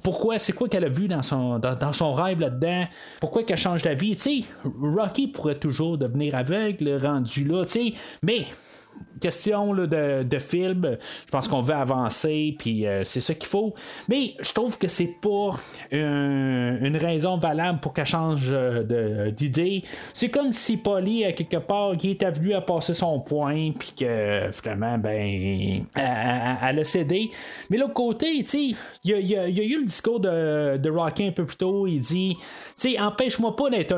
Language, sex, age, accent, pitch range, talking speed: French, male, 30-49, Canadian, 135-190 Hz, 195 wpm